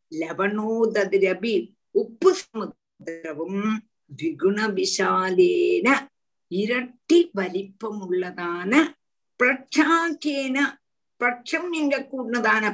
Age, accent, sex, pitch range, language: 50-69, native, female, 195-315 Hz, Tamil